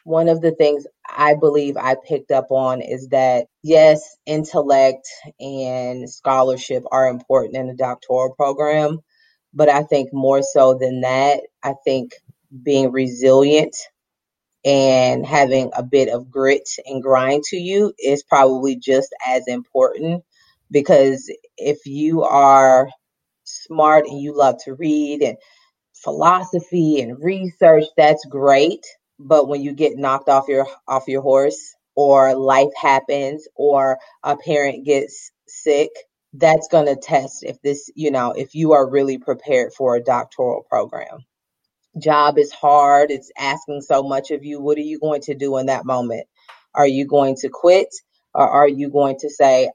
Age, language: 30-49, English